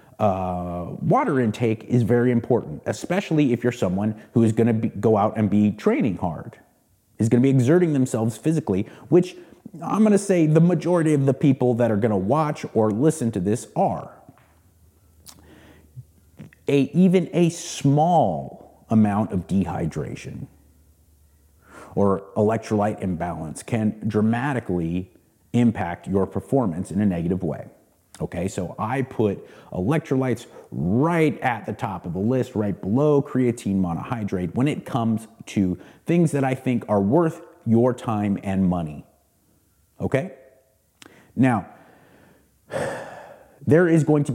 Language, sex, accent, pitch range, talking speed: English, male, American, 95-135 Hz, 140 wpm